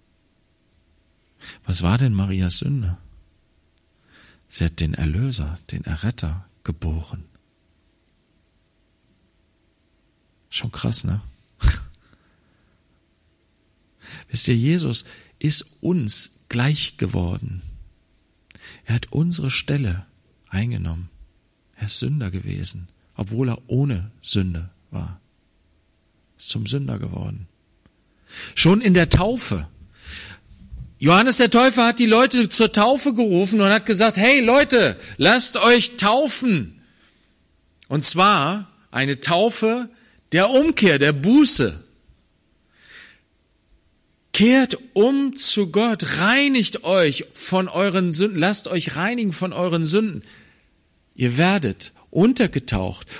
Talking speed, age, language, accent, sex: 100 wpm, 50-69, German, German, male